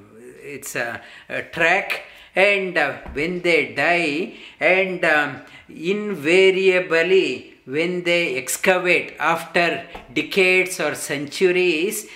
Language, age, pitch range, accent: English, 50-69, 145-185 Hz, Indian